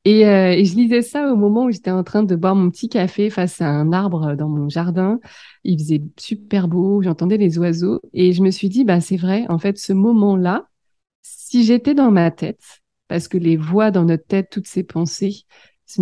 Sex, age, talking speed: female, 30-49, 225 wpm